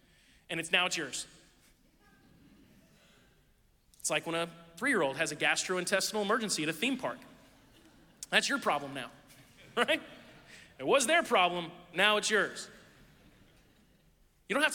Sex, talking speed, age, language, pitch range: male, 135 wpm, 30-49, English, 135-185 Hz